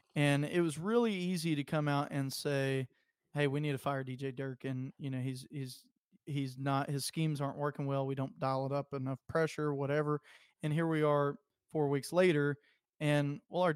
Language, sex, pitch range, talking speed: English, male, 135-160 Hz, 205 wpm